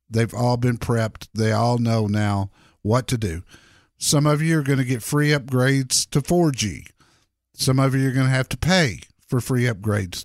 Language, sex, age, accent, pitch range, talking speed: English, male, 50-69, American, 105-150 Hz, 200 wpm